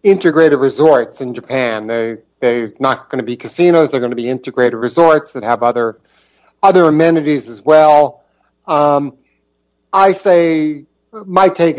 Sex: male